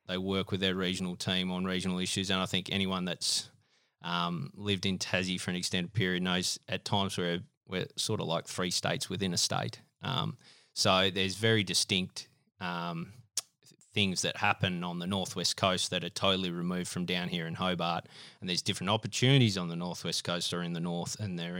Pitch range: 90-100 Hz